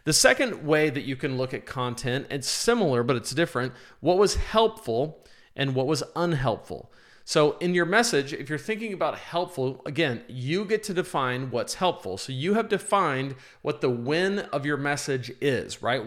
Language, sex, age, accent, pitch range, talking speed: English, male, 40-59, American, 125-175 Hz, 185 wpm